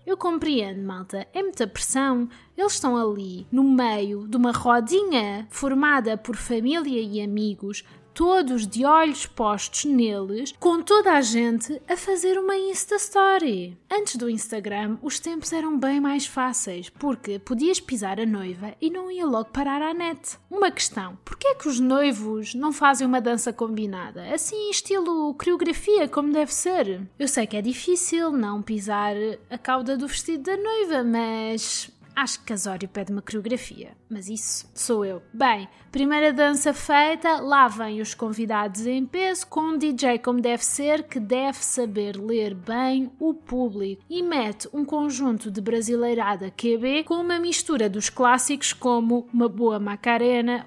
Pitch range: 215-300 Hz